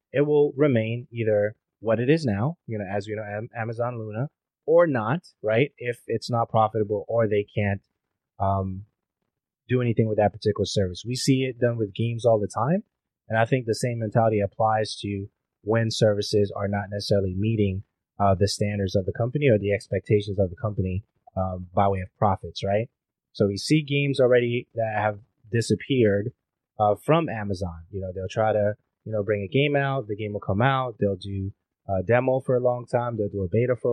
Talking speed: 200 wpm